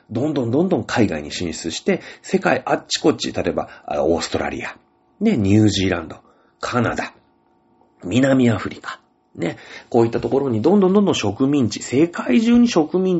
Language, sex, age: Japanese, male, 40-59